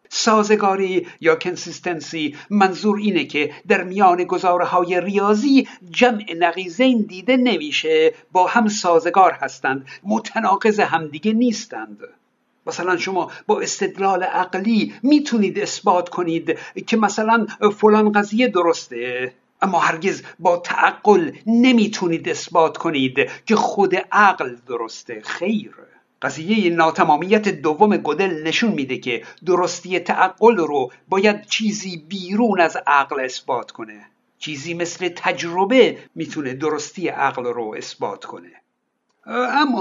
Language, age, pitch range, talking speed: Persian, 60-79, 170-225 Hz, 110 wpm